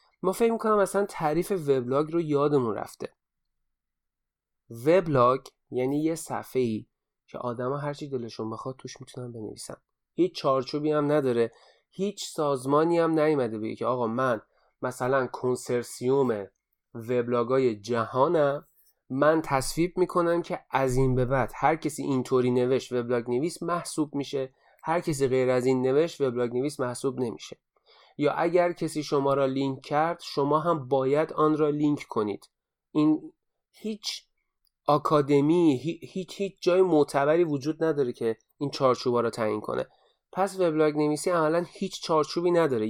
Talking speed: 140 wpm